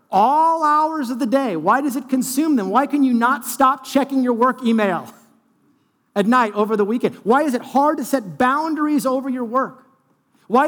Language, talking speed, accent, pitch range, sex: English, 195 wpm, American, 200-270 Hz, male